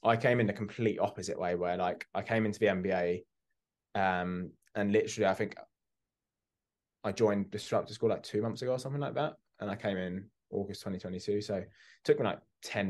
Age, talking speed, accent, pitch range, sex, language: 20-39, 210 wpm, British, 95-115 Hz, male, English